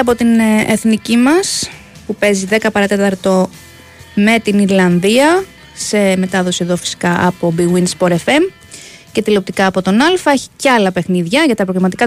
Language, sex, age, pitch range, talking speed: Greek, female, 20-39, 190-255 Hz, 145 wpm